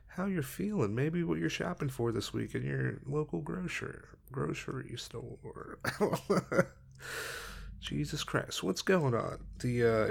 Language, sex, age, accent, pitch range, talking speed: English, male, 30-49, American, 110-140 Hz, 135 wpm